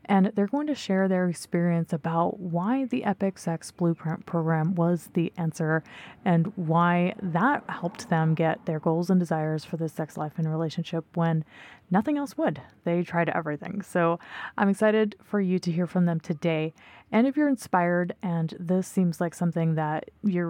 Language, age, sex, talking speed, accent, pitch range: English, 20-39, female, 180 wpm, American, 165-195 Hz